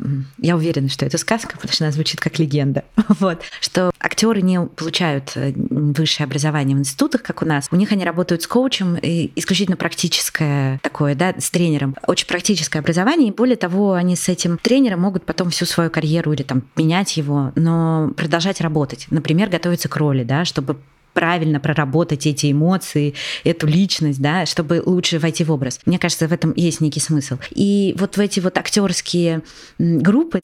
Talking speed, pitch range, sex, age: 175 wpm, 155-195 Hz, female, 20-39